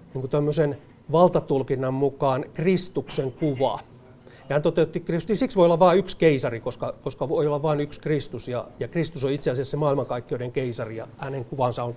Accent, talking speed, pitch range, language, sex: native, 175 wpm, 135-185 Hz, Finnish, male